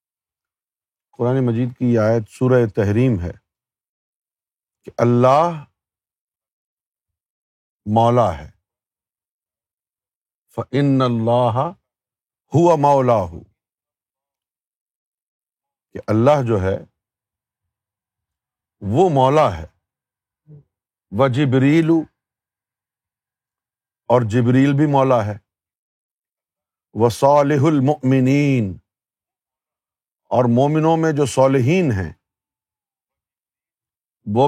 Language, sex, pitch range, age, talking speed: Urdu, male, 110-145 Hz, 50-69, 70 wpm